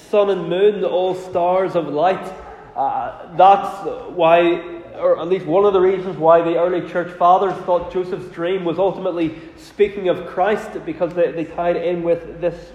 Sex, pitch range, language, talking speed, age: male, 160-185 Hz, English, 175 wpm, 20-39